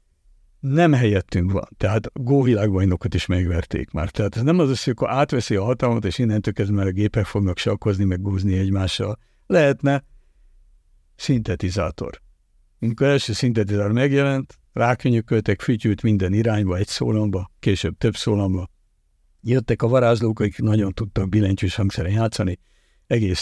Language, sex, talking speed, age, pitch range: Hungarian, male, 140 wpm, 60-79, 95-120 Hz